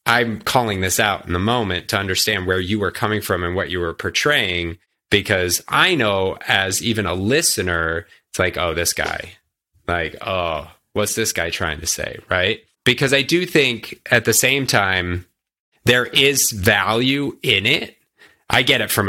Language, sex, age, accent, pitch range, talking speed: English, male, 30-49, American, 90-115 Hz, 180 wpm